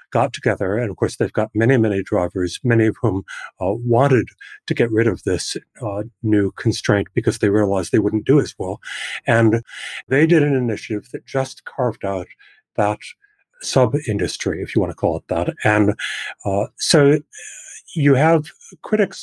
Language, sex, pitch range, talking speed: English, male, 110-150 Hz, 175 wpm